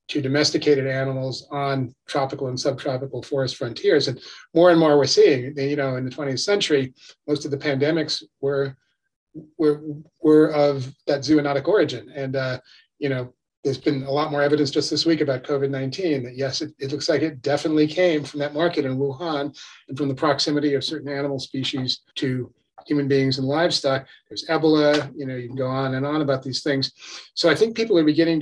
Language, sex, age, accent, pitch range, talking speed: English, male, 40-59, American, 135-150 Hz, 195 wpm